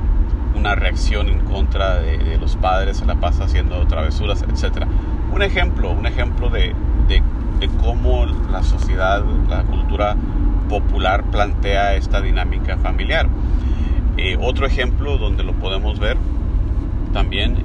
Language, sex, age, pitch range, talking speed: Spanish, male, 40-59, 75-95 Hz, 135 wpm